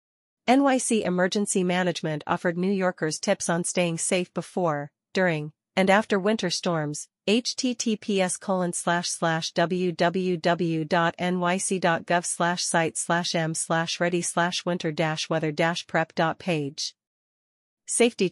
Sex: female